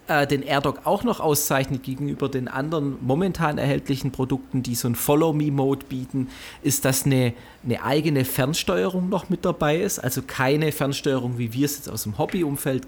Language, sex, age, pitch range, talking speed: German, male, 40-59, 125-150 Hz, 170 wpm